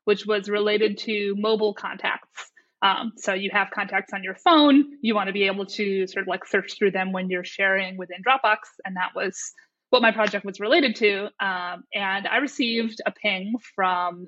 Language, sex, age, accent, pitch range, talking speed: English, female, 20-39, American, 190-245 Hz, 195 wpm